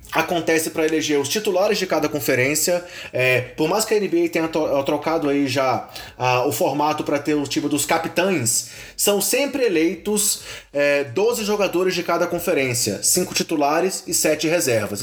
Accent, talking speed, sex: Brazilian, 170 wpm, male